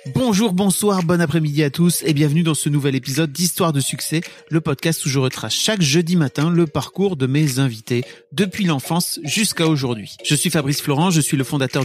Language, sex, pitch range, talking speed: French, male, 130-165 Hz, 205 wpm